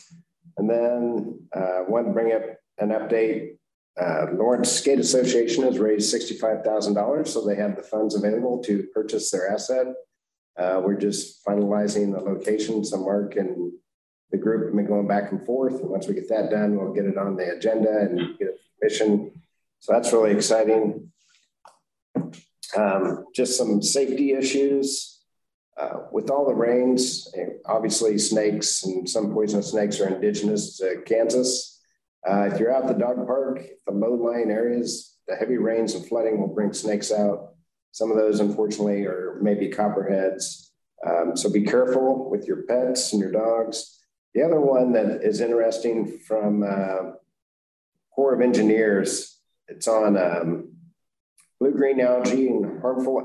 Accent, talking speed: American, 155 wpm